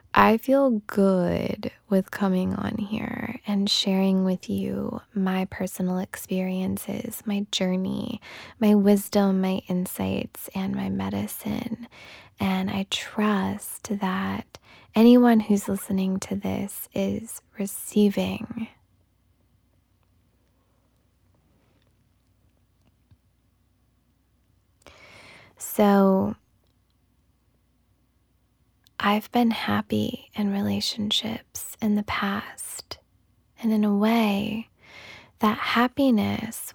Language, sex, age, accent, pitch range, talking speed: English, female, 20-39, American, 130-215 Hz, 80 wpm